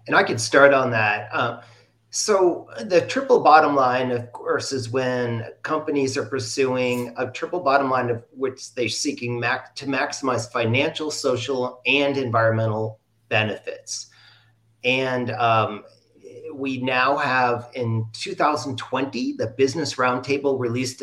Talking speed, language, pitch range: 130 wpm, English, 115-140 Hz